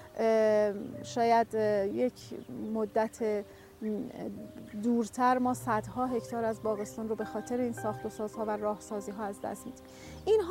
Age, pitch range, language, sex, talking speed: 40-59, 220-255 Hz, Persian, female, 145 wpm